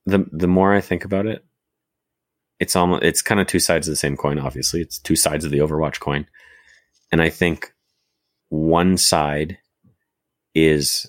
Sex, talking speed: male, 170 wpm